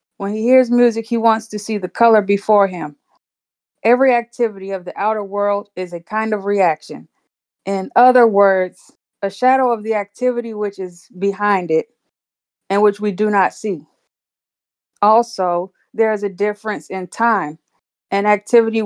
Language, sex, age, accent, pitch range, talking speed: English, female, 20-39, American, 185-220 Hz, 160 wpm